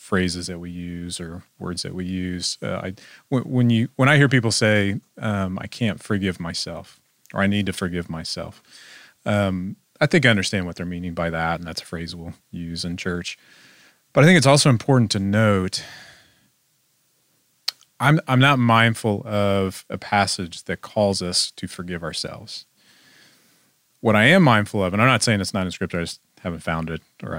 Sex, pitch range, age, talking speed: male, 90-115 Hz, 30-49, 195 wpm